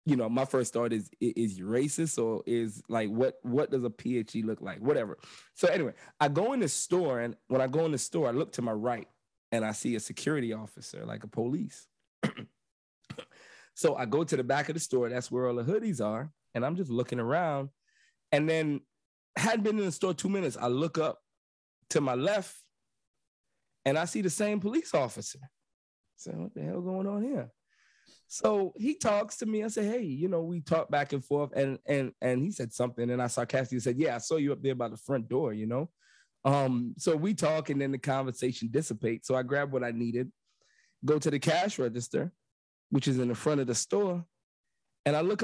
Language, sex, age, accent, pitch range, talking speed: English, male, 20-39, American, 125-185 Hz, 220 wpm